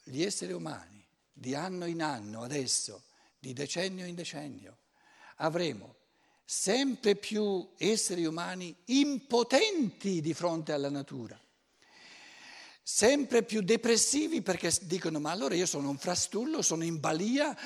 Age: 60-79